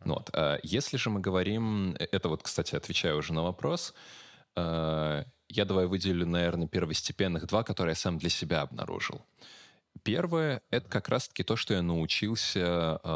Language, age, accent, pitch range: Russian, 20-39, native, 80-115 Hz